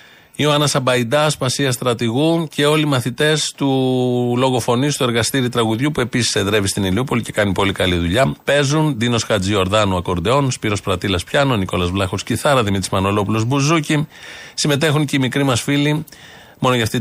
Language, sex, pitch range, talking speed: Greek, male, 110-145 Hz, 160 wpm